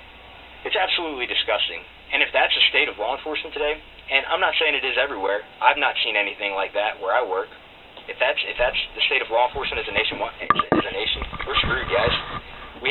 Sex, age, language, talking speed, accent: male, 30-49, English, 220 wpm, American